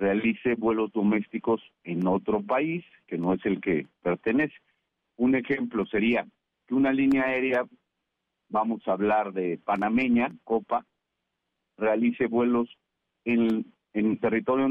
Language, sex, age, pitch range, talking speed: Spanish, male, 50-69, 105-135 Hz, 120 wpm